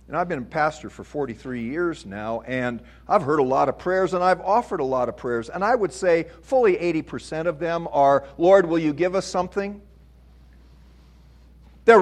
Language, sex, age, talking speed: English, male, 50-69, 195 wpm